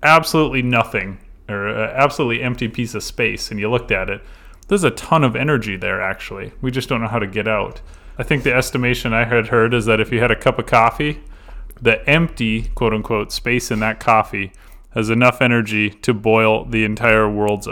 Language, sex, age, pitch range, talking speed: English, male, 30-49, 105-120 Hz, 200 wpm